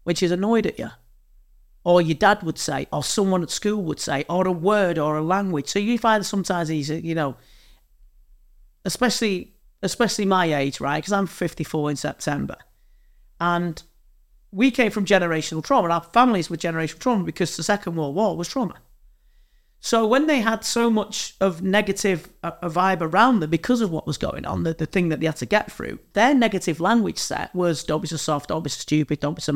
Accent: British